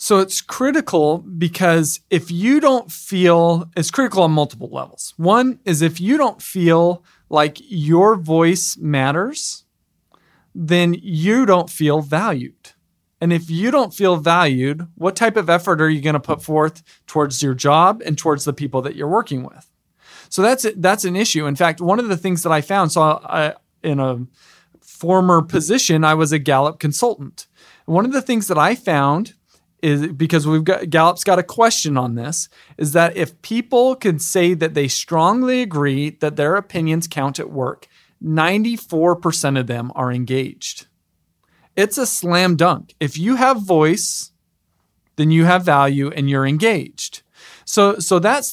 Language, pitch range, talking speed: English, 150-190 Hz, 170 wpm